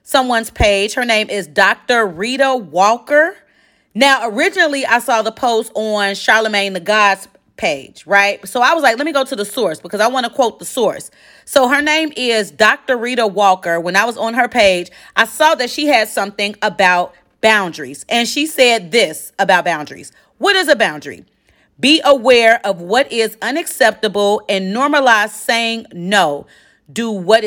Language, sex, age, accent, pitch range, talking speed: English, female, 30-49, American, 195-255 Hz, 175 wpm